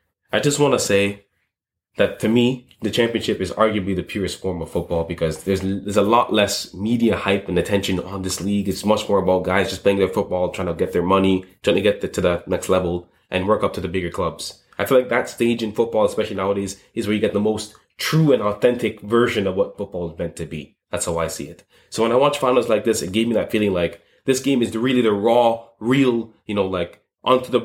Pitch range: 95-120 Hz